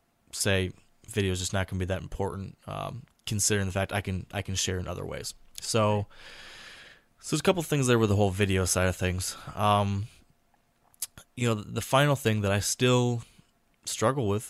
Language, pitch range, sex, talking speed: English, 95-110 Hz, male, 205 wpm